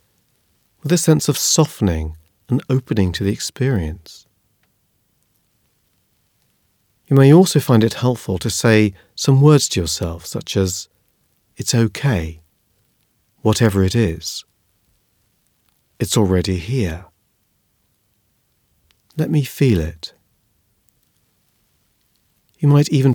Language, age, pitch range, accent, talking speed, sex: English, 40-59, 95-125 Hz, British, 100 wpm, male